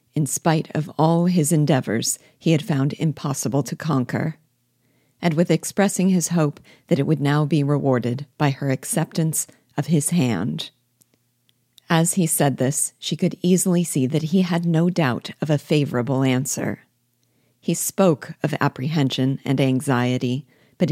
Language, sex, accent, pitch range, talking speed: English, female, American, 135-165 Hz, 150 wpm